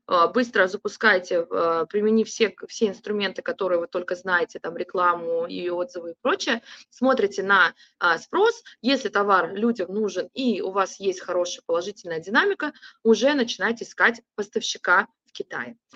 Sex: female